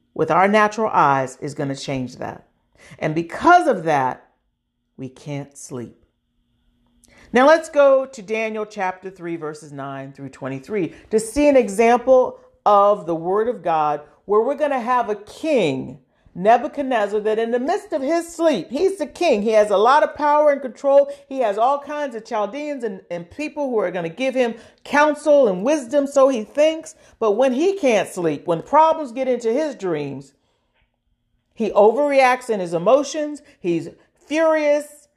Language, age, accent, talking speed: English, 40-59, American, 170 wpm